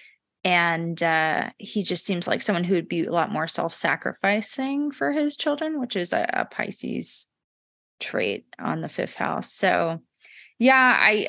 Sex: female